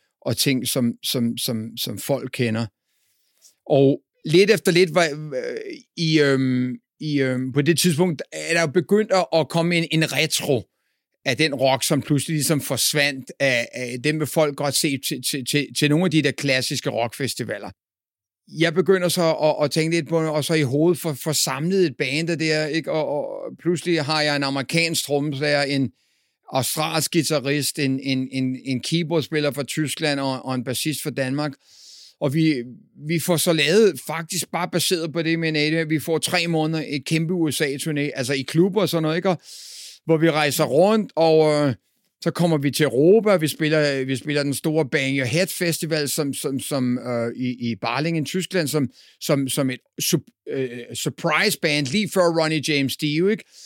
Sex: male